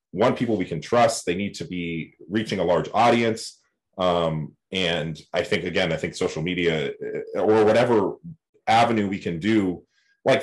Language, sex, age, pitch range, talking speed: English, male, 30-49, 80-110 Hz, 165 wpm